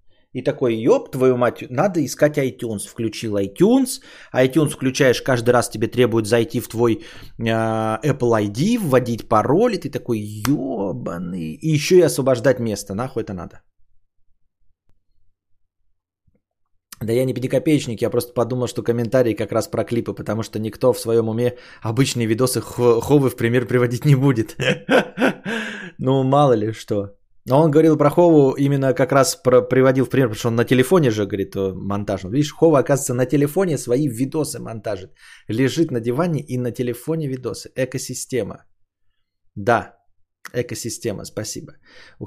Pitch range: 110-135 Hz